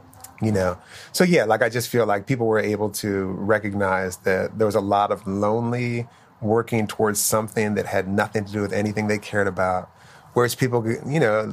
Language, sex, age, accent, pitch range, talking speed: English, male, 30-49, American, 100-120 Hz, 200 wpm